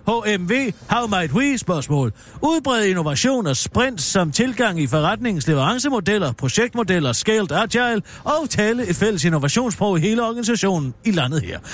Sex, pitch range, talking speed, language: male, 150-230 Hz, 140 wpm, Danish